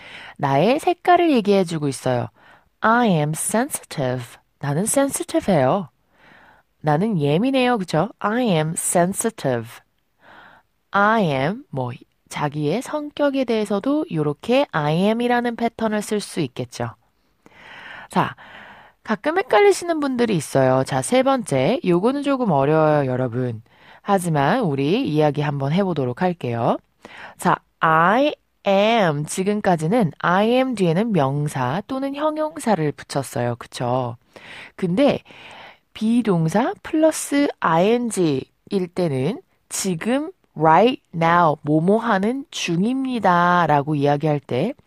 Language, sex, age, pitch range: Korean, female, 20-39, 150-245 Hz